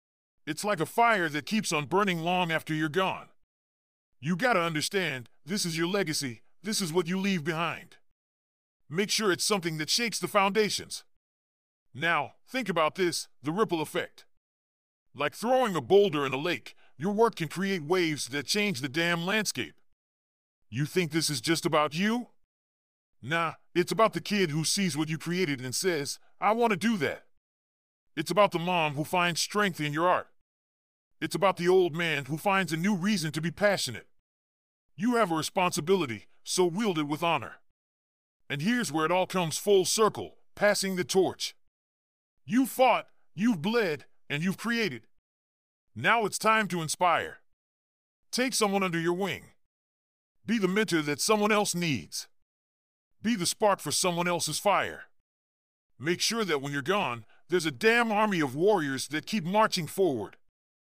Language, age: English, 40-59